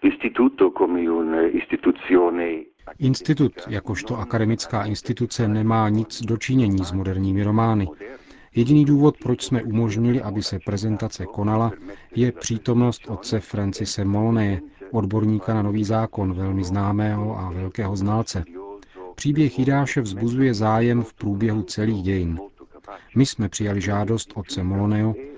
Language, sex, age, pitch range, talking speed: Czech, male, 40-59, 100-120 Hz, 110 wpm